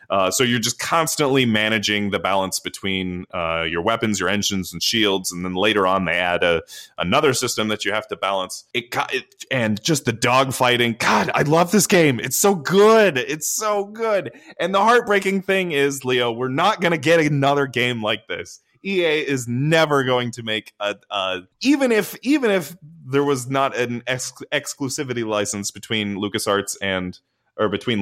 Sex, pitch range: male, 105-140 Hz